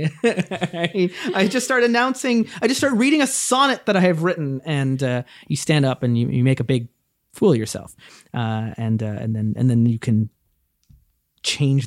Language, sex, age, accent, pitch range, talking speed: English, male, 30-49, American, 120-180 Hz, 195 wpm